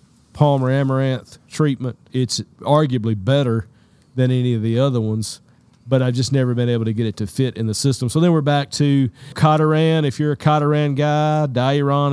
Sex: male